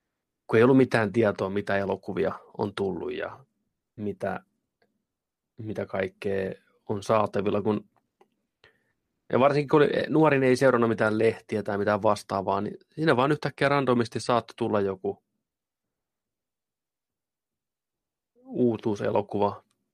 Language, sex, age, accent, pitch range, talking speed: Finnish, male, 30-49, native, 105-125 Hz, 110 wpm